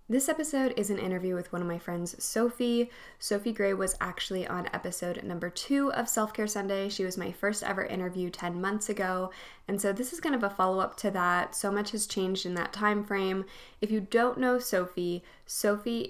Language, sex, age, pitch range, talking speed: English, female, 10-29, 180-220 Hz, 205 wpm